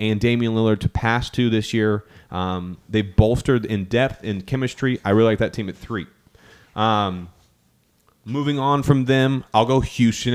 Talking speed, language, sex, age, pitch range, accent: 175 wpm, English, male, 30-49, 105-130 Hz, American